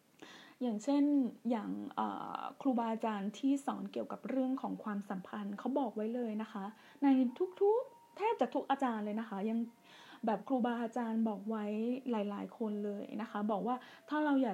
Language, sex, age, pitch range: Thai, female, 20-39, 215-270 Hz